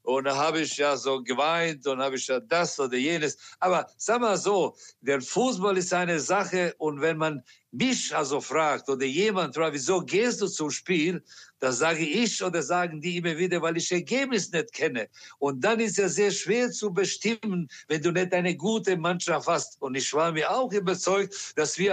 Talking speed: 205 wpm